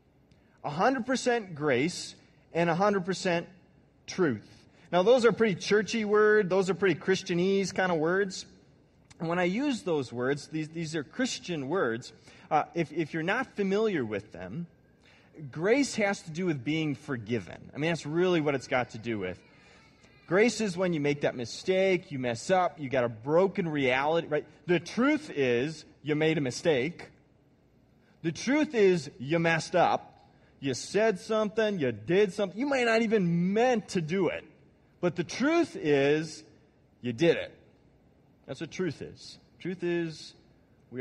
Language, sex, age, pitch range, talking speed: English, male, 30-49, 140-195 Hz, 160 wpm